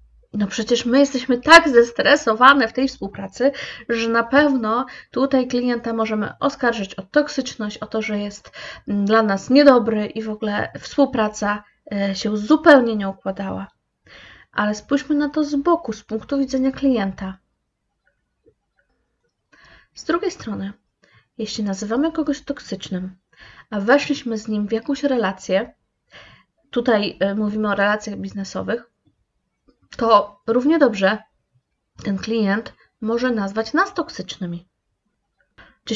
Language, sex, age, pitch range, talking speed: Polish, female, 20-39, 205-270 Hz, 120 wpm